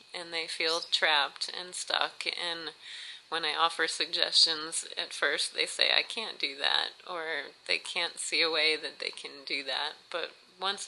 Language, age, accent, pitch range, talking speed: English, 30-49, American, 155-190 Hz, 175 wpm